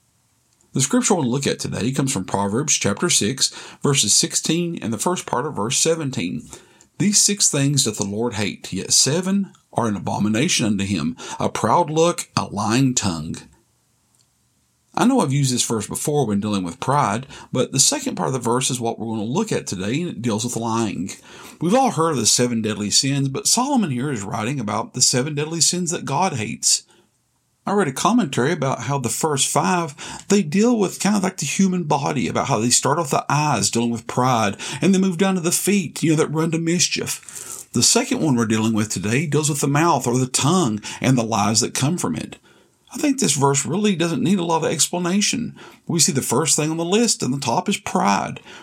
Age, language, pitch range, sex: 40-59, English, 120-180 Hz, male